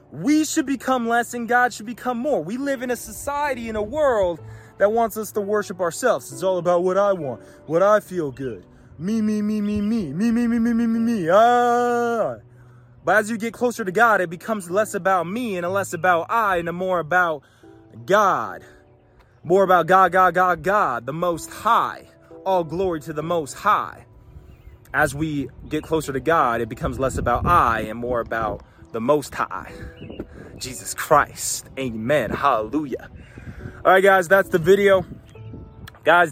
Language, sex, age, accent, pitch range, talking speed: English, male, 20-39, American, 125-190 Hz, 180 wpm